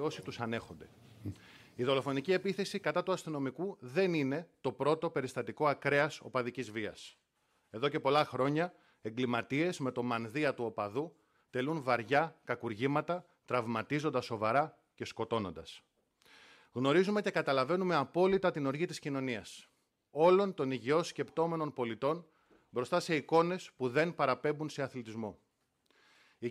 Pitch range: 125-160 Hz